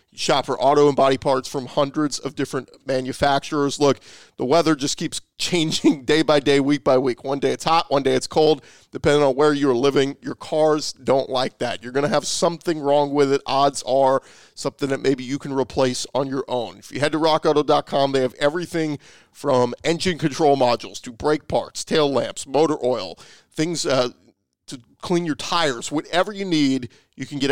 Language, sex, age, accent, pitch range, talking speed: English, male, 40-59, American, 125-155 Hz, 200 wpm